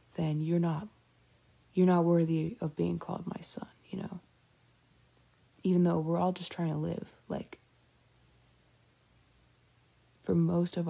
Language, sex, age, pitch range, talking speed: English, female, 20-39, 150-175 Hz, 140 wpm